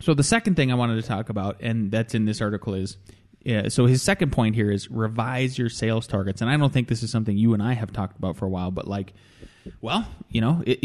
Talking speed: 260 wpm